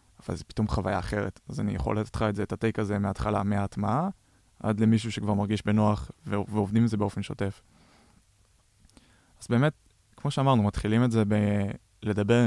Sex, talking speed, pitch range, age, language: male, 175 wpm, 100-120 Hz, 20-39, Hebrew